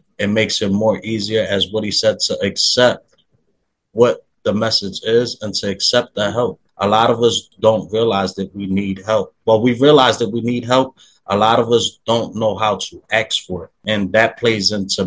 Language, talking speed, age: English, 205 wpm, 30-49